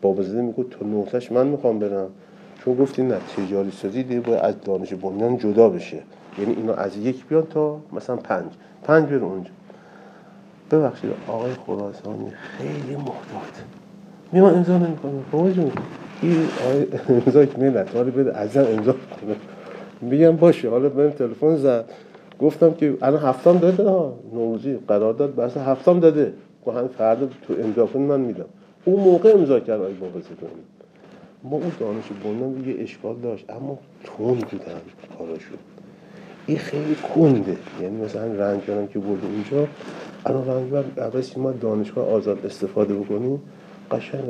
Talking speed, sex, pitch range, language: 145 wpm, male, 110-150 Hz, Persian